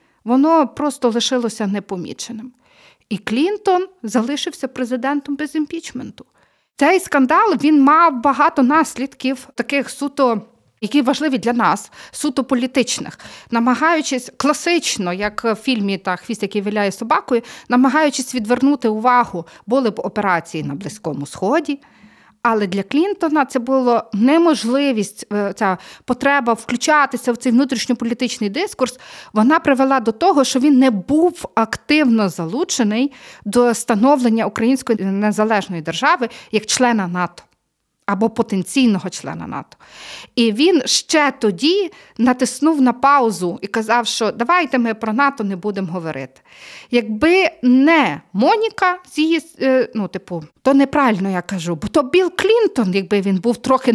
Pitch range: 215-285 Hz